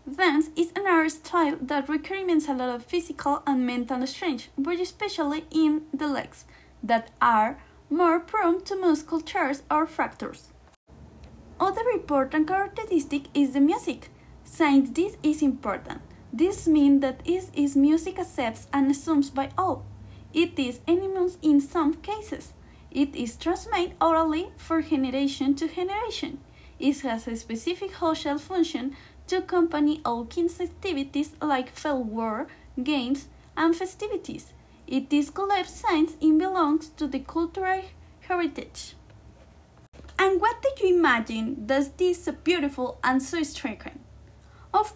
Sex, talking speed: female, 135 wpm